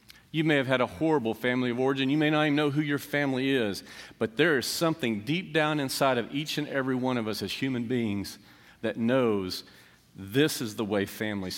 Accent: American